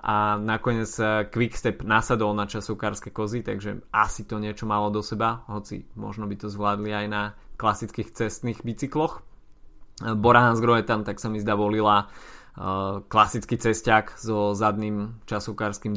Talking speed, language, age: 130 wpm, Slovak, 20-39